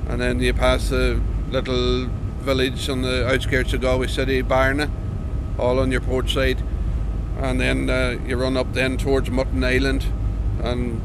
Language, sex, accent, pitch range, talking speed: English, male, Irish, 100-130 Hz, 165 wpm